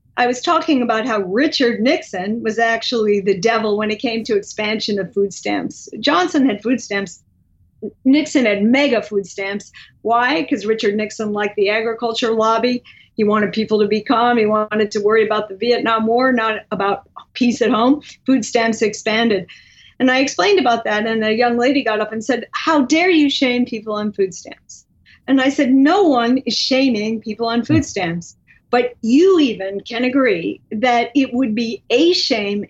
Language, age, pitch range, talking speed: English, 40-59, 215-255 Hz, 185 wpm